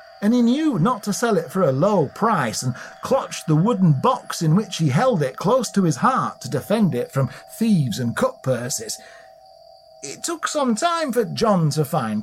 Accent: British